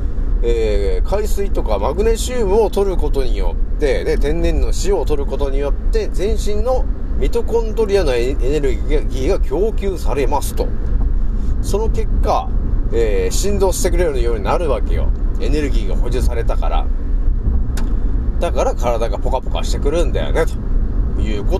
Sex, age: male, 30-49